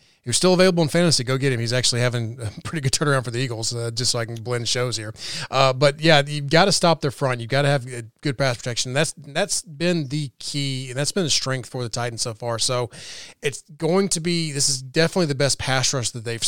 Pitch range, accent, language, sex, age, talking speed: 120-145 Hz, American, English, male, 30-49, 260 wpm